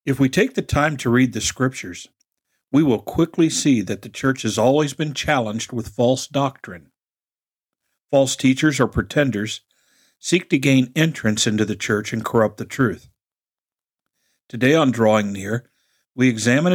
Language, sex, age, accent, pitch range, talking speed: English, male, 50-69, American, 110-135 Hz, 160 wpm